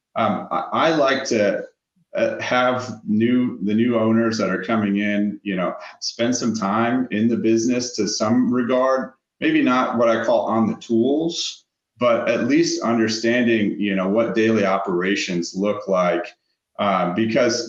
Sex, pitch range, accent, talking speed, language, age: male, 100-120 Hz, American, 160 wpm, English, 30-49